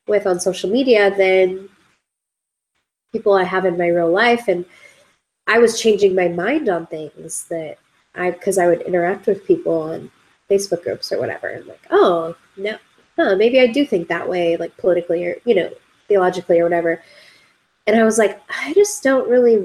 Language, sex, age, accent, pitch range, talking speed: English, female, 20-39, American, 175-215 Hz, 180 wpm